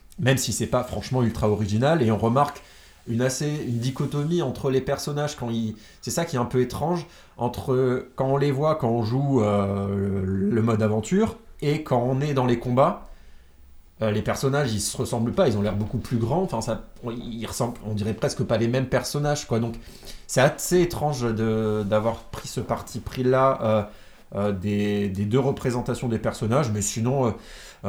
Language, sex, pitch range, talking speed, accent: French, male, 105-130 Hz, 195 wpm, French